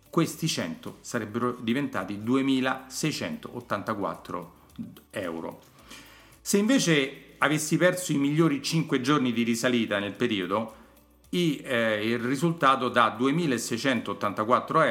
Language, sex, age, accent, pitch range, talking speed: Italian, male, 40-59, native, 115-140 Hz, 90 wpm